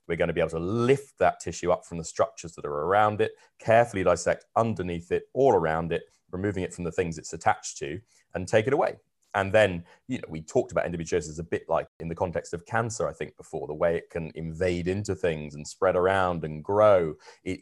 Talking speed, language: 230 wpm, English